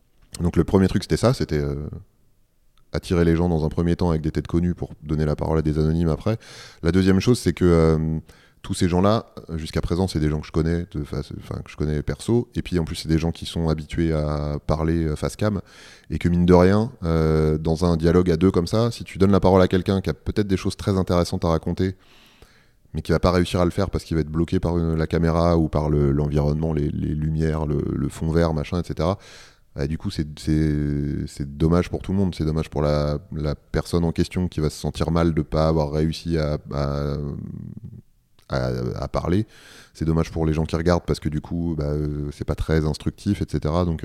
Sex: male